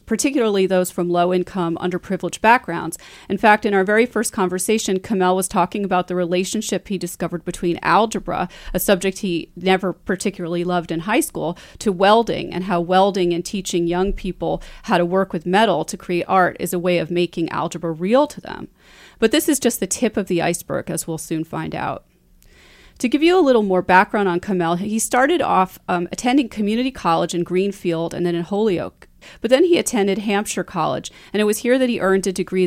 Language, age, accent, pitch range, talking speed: English, 30-49, American, 175-205 Hz, 200 wpm